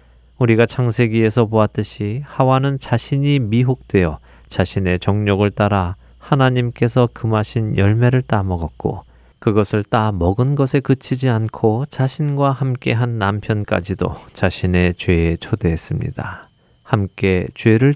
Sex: male